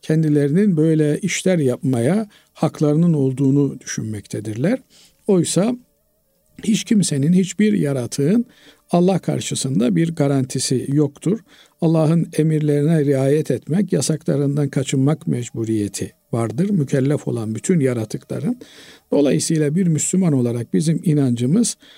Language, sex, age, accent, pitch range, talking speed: Turkish, male, 50-69, native, 135-170 Hz, 95 wpm